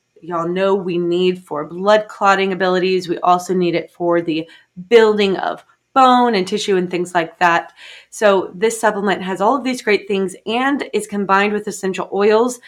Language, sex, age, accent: English, female, 20-39, American